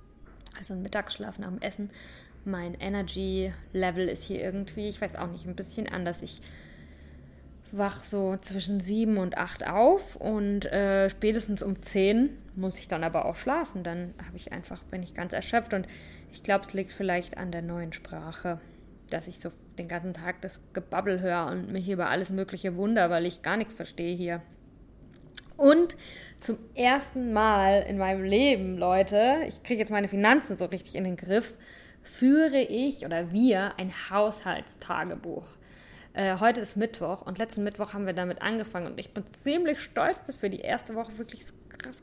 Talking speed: 175 wpm